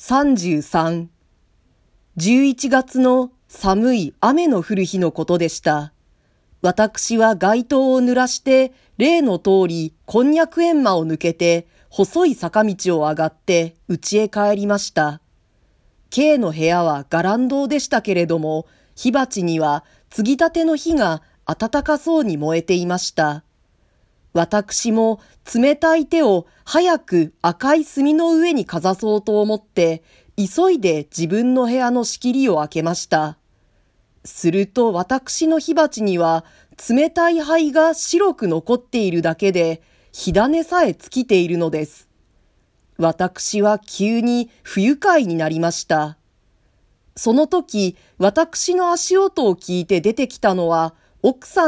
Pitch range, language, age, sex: 165-270 Hz, Japanese, 40-59, female